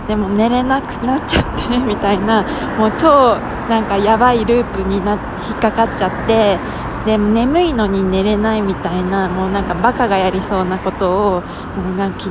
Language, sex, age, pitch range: Japanese, female, 20-39, 195-245 Hz